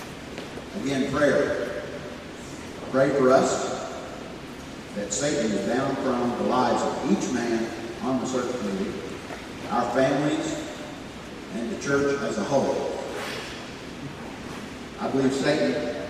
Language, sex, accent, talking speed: English, male, American, 110 wpm